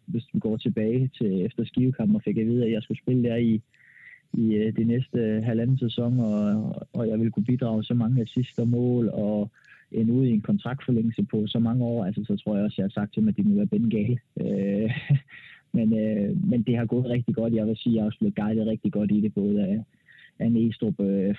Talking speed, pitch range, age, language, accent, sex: 240 wpm, 110-125 Hz, 20-39, Danish, native, male